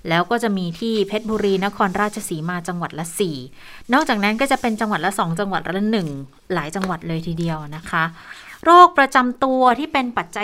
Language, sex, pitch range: Thai, female, 165-210 Hz